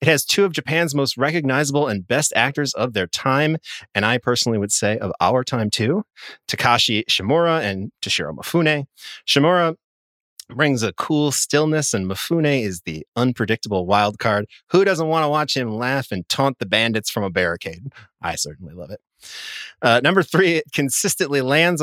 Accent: American